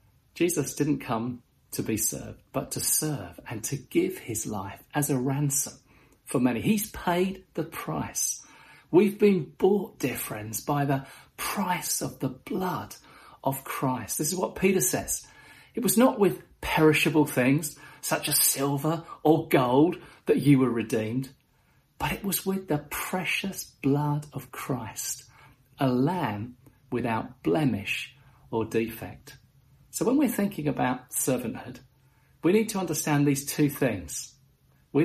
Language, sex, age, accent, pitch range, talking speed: English, male, 40-59, British, 125-150 Hz, 145 wpm